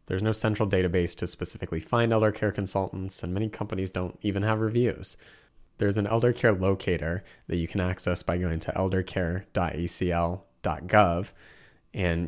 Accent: American